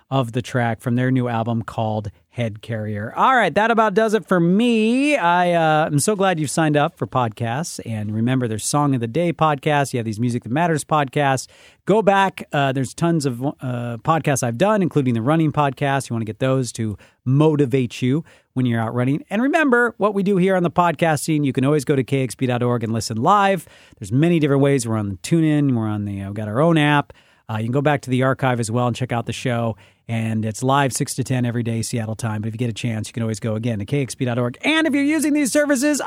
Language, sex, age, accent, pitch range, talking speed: English, male, 40-59, American, 120-170 Hz, 245 wpm